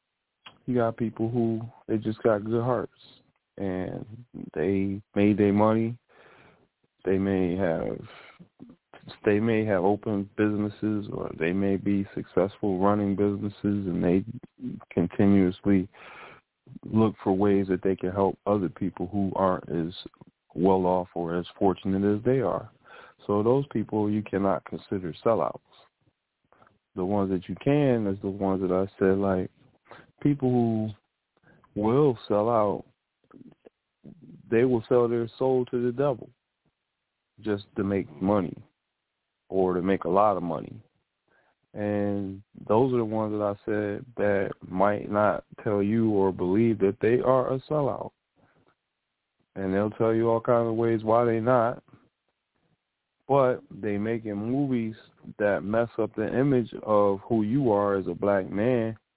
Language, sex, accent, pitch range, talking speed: English, male, American, 95-115 Hz, 145 wpm